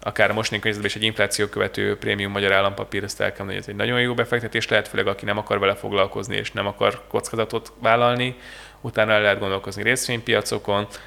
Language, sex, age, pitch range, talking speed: Hungarian, male, 20-39, 105-120 Hz, 190 wpm